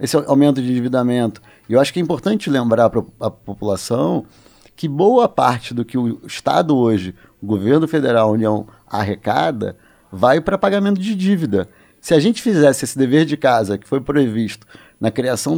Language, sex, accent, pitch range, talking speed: Portuguese, male, Brazilian, 110-155 Hz, 175 wpm